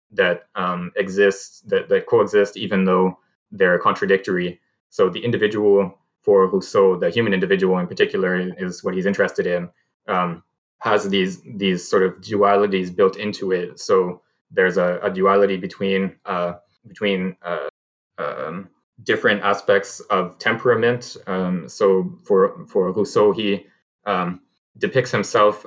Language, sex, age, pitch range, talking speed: English, male, 20-39, 90-105 Hz, 140 wpm